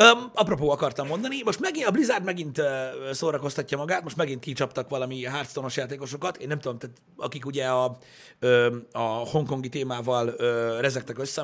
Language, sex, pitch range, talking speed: Hungarian, male, 125-155 Hz, 170 wpm